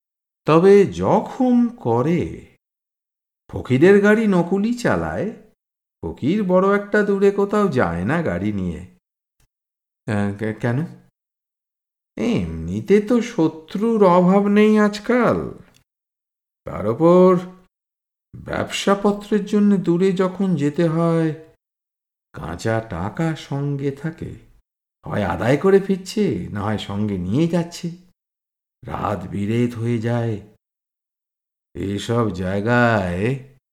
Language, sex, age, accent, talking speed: Bengali, male, 50-69, native, 90 wpm